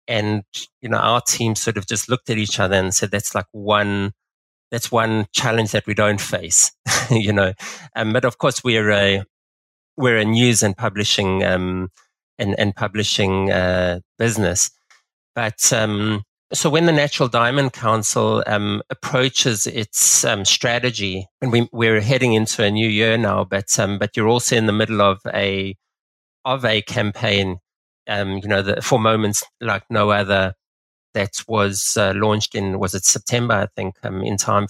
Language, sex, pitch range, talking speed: English, male, 100-115 Hz, 175 wpm